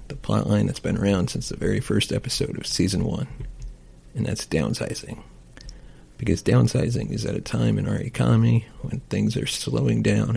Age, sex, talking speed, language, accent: 40-59, male, 180 wpm, English, American